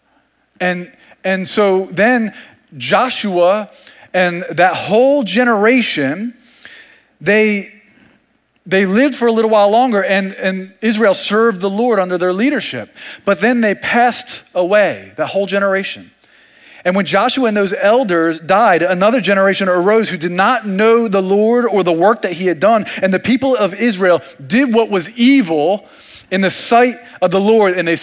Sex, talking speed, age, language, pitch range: male, 160 wpm, 30-49, English, 175-225 Hz